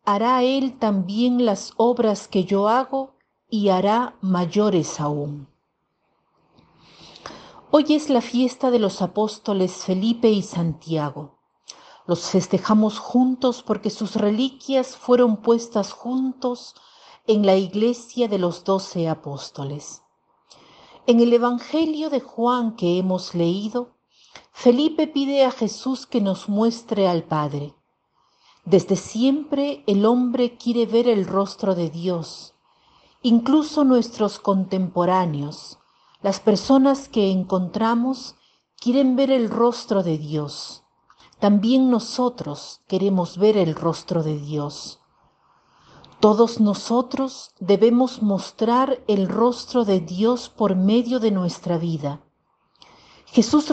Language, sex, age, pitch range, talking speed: Spanish, female, 50-69, 185-245 Hz, 110 wpm